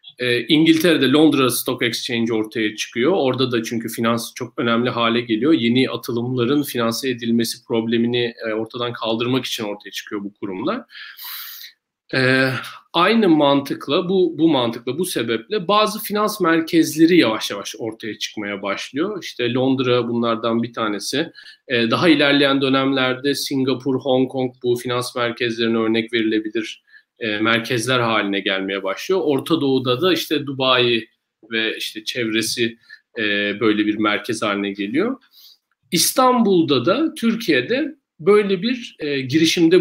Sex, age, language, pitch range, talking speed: male, 40-59, Turkish, 115-150 Hz, 125 wpm